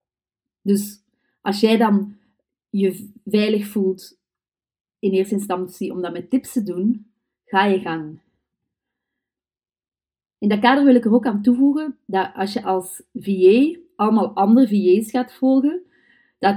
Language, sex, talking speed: Dutch, female, 140 wpm